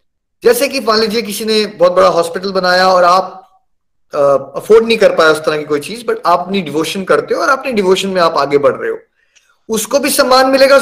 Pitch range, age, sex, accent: 170-250 Hz, 20-39, male, native